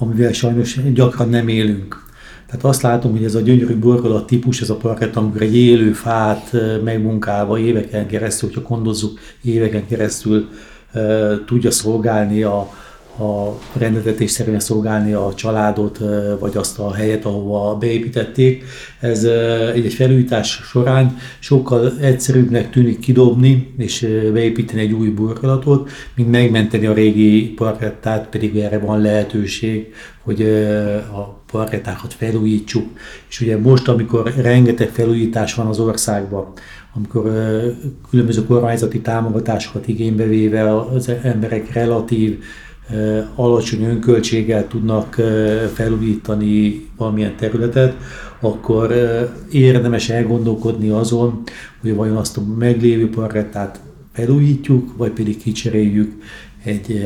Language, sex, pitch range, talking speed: Hungarian, male, 105-120 Hz, 115 wpm